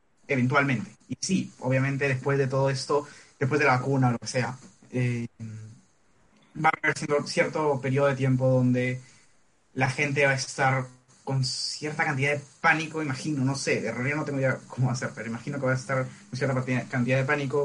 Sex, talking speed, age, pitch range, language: male, 200 wpm, 20-39, 125-150 Hz, Spanish